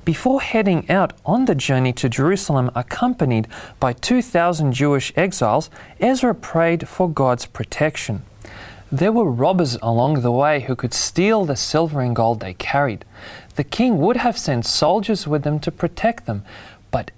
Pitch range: 125-190 Hz